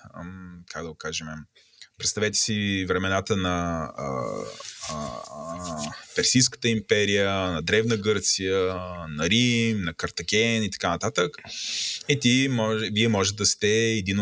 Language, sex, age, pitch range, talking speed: Bulgarian, male, 20-39, 90-110 Hz, 120 wpm